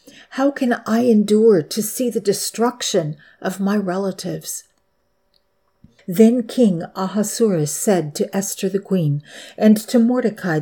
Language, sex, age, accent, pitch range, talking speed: English, female, 50-69, American, 170-225 Hz, 125 wpm